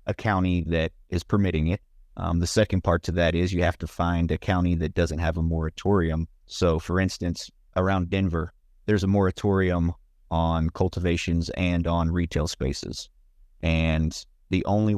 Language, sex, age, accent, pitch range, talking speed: English, male, 30-49, American, 80-95 Hz, 165 wpm